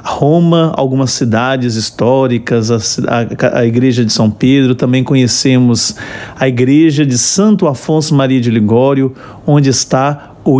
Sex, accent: male, Brazilian